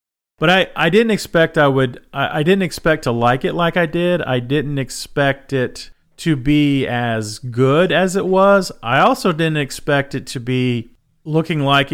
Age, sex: 40-59, male